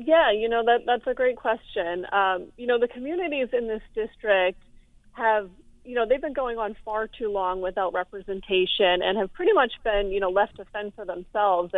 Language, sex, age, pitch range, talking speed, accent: English, female, 30-49, 185-220 Hz, 205 wpm, American